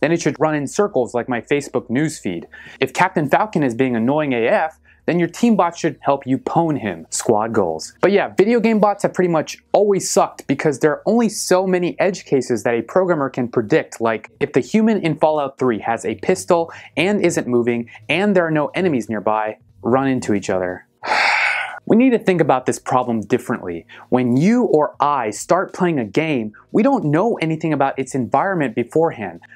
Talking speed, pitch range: 200 wpm, 125-185 Hz